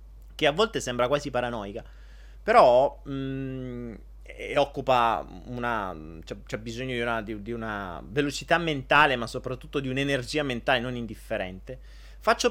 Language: Italian